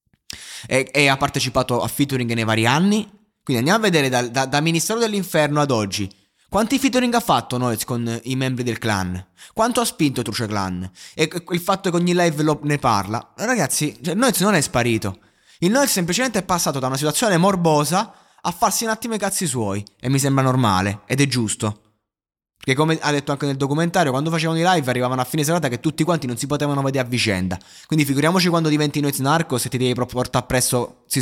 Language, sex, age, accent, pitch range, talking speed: Italian, male, 20-39, native, 115-160 Hz, 215 wpm